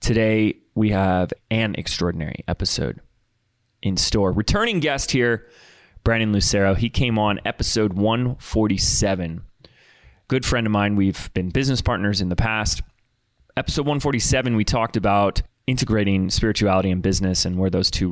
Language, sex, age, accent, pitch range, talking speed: English, male, 20-39, American, 95-115 Hz, 140 wpm